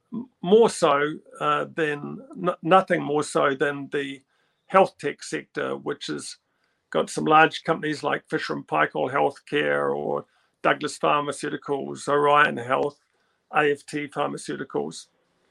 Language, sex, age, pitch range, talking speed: English, male, 50-69, 145-175 Hz, 110 wpm